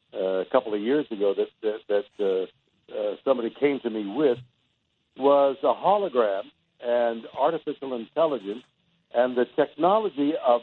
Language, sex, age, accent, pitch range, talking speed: English, male, 60-79, American, 120-150 Hz, 145 wpm